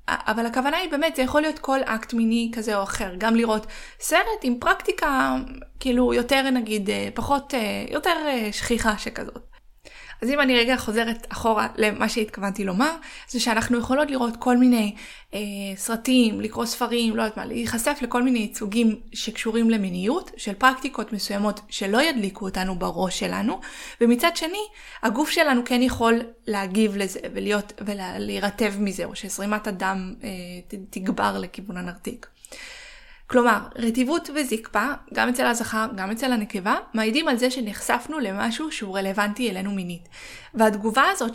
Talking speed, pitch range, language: 140 wpm, 215-265 Hz, Hebrew